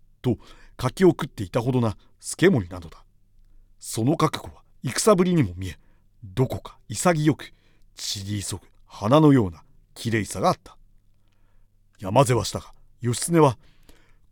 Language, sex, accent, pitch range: Japanese, male, native, 100-140 Hz